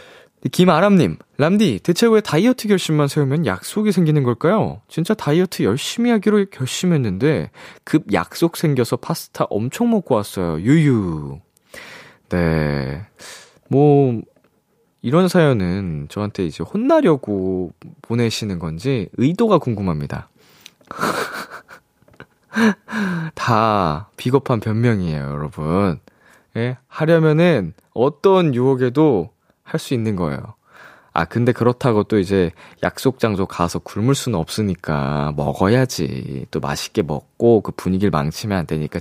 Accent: native